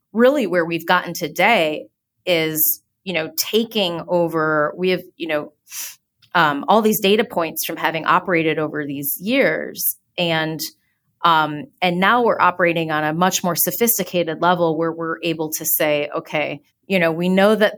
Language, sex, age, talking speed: English, female, 30-49, 160 wpm